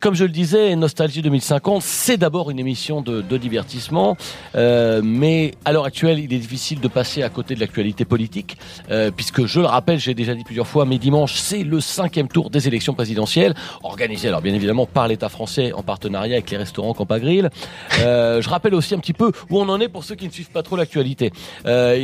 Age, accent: 40-59, French